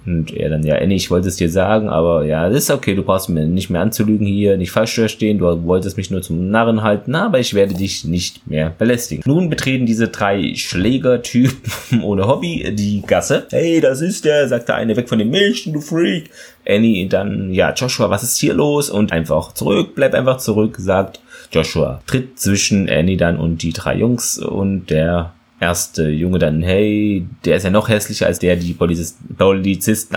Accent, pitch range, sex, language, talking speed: German, 85-110 Hz, male, German, 200 wpm